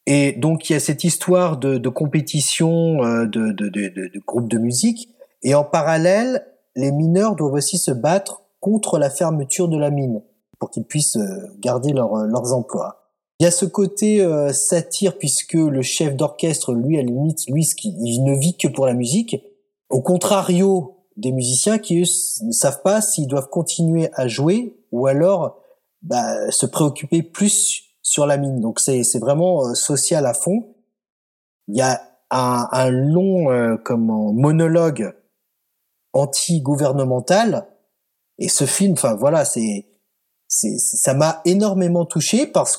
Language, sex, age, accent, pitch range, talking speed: French, male, 30-49, French, 125-180 Hz, 165 wpm